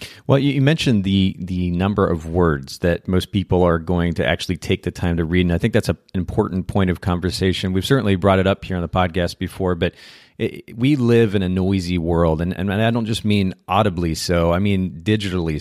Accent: American